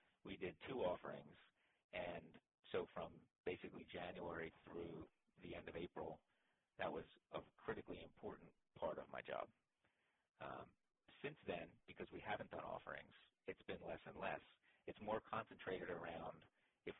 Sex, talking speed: male, 145 wpm